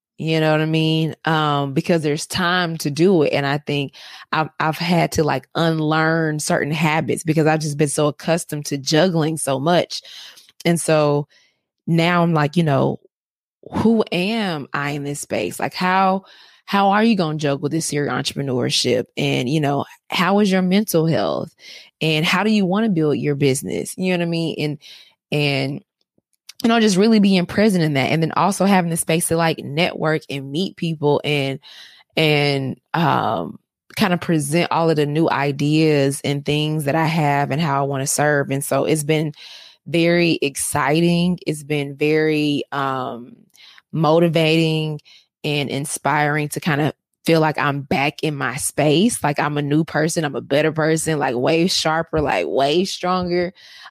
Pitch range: 145-170 Hz